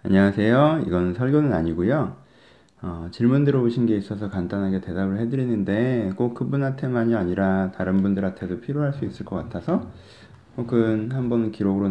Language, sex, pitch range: Korean, male, 95-130 Hz